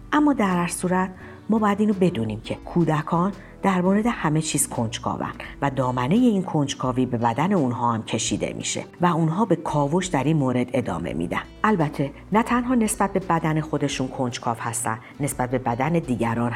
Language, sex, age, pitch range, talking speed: Persian, female, 50-69, 120-170 Hz, 175 wpm